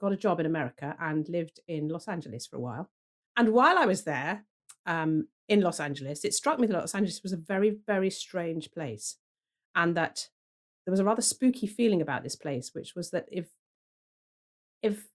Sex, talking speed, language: female, 200 wpm, English